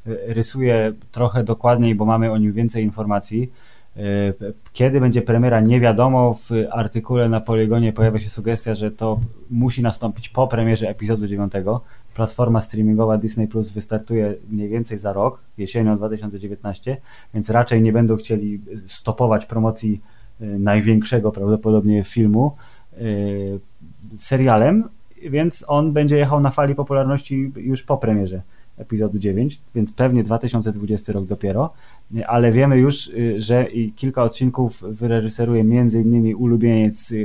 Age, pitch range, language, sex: 20-39, 105-120 Hz, Polish, male